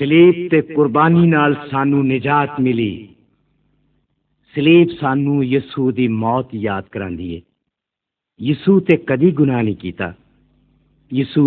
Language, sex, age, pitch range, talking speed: Arabic, male, 50-69, 105-145 Hz, 115 wpm